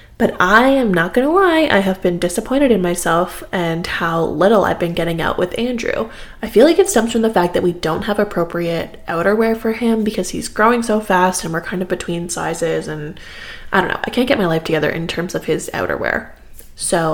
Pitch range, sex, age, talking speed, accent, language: 180-235 Hz, female, 20-39, 230 wpm, American, English